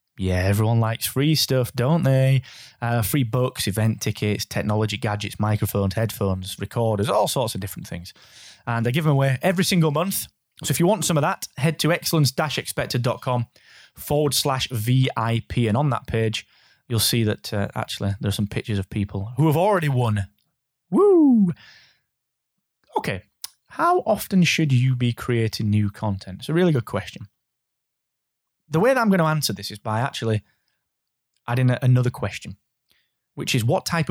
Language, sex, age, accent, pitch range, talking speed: English, male, 20-39, British, 105-140 Hz, 170 wpm